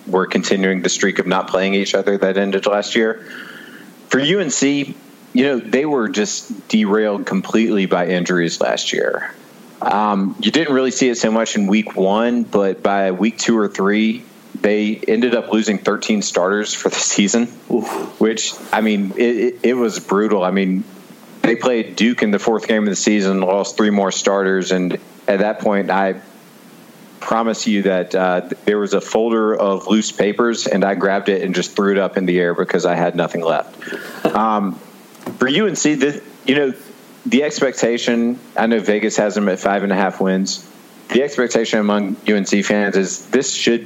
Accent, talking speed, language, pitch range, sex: American, 185 wpm, English, 95-110 Hz, male